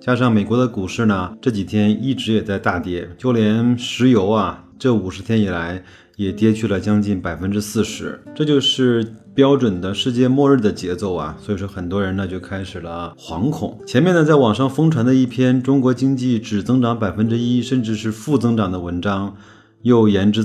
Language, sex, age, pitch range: Chinese, male, 30-49, 95-120 Hz